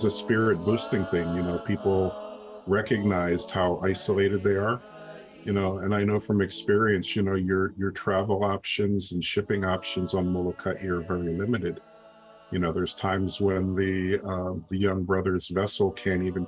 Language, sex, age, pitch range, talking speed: English, male, 50-69, 90-100 Hz, 170 wpm